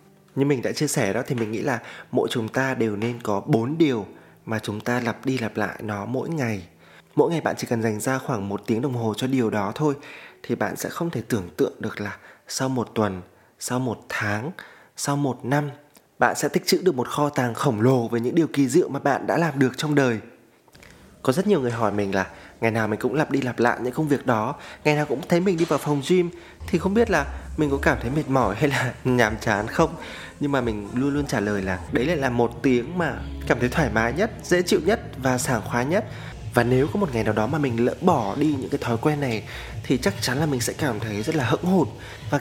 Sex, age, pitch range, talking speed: male, 20-39, 115-150 Hz, 260 wpm